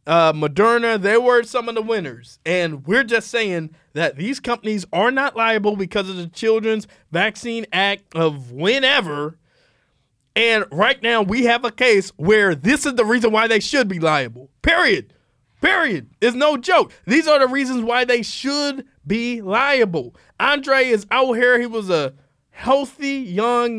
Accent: American